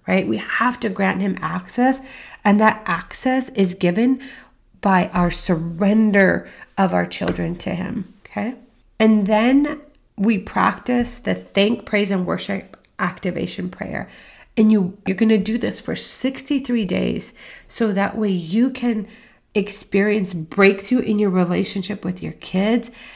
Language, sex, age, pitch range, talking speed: English, female, 30-49, 185-225 Hz, 140 wpm